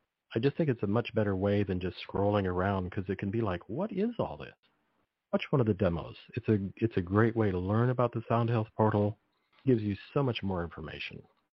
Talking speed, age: 240 wpm, 50-69